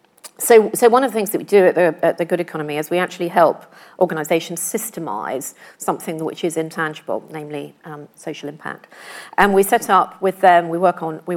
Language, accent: English, British